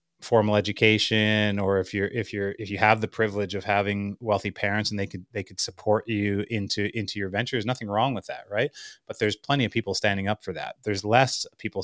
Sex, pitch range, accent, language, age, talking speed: male, 100-115 Hz, American, English, 30-49, 230 wpm